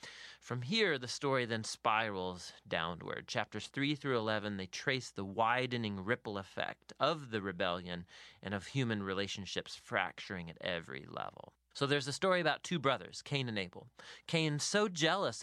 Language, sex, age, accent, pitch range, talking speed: English, male, 30-49, American, 110-160 Hz, 160 wpm